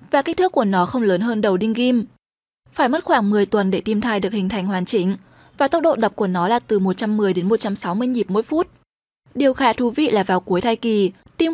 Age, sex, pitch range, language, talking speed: 20-39, female, 200-270 Hz, Vietnamese, 250 wpm